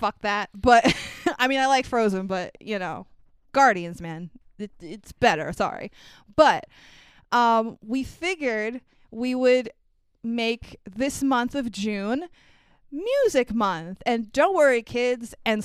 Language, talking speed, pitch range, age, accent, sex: English, 130 wpm, 210-270 Hz, 20-39, American, female